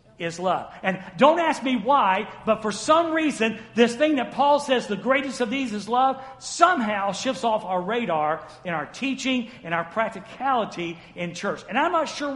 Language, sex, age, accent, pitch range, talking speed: English, male, 50-69, American, 180-255 Hz, 190 wpm